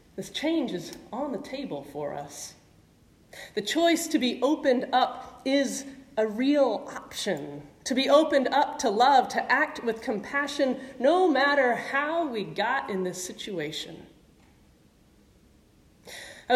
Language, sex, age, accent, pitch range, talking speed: English, female, 30-49, American, 190-275 Hz, 135 wpm